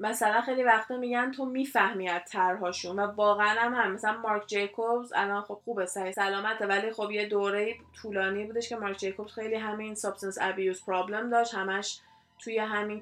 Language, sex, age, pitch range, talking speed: Persian, female, 20-39, 200-245 Hz, 175 wpm